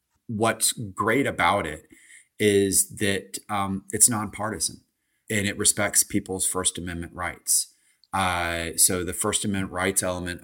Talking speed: 130 wpm